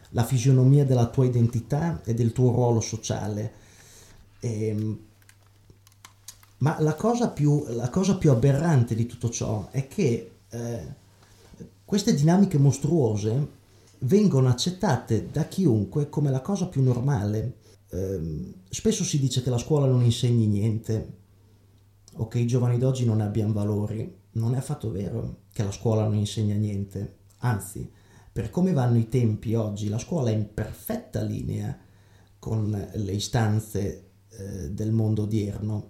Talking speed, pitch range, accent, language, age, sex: 140 wpm, 105-145 Hz, native, Italian, 30-49, male